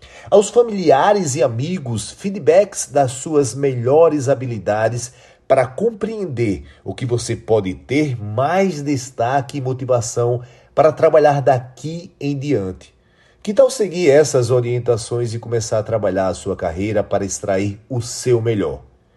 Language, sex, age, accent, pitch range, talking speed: Portuguese, male, 40-59, Brazilian, 120-160 Hz, 130 wpm